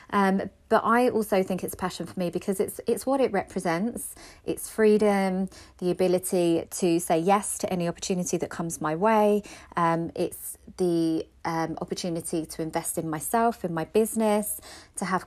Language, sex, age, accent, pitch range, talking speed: English, female, 30-49, British, 170-205 Hz, 170 wpm